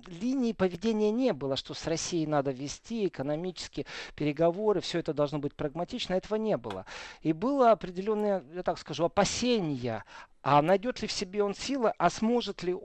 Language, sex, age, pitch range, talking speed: Russian, male, 40-59, 145-195 Hz, 170 wpm